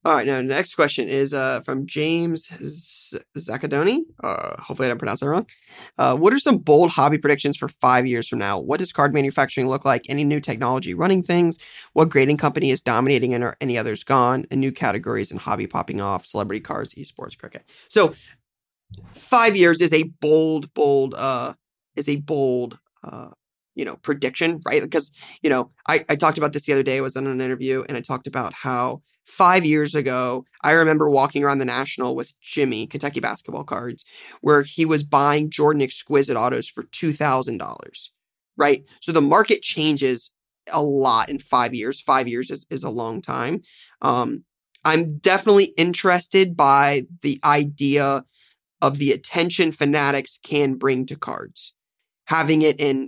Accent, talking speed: American, 180 wpm